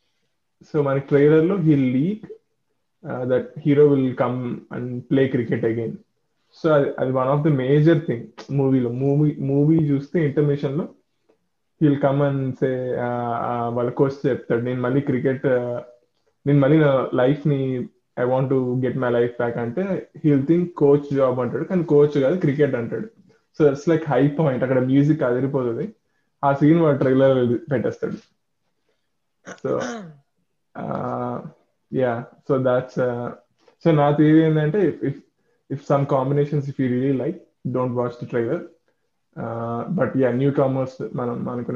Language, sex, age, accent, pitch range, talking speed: Telugu, male, 20-39, native, 125-145 Hz, 155 wpm